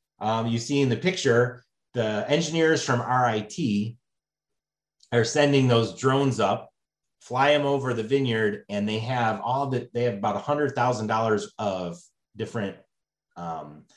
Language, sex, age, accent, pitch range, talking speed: English, male, 30-49, American, 110-145 Hz, 150 wpm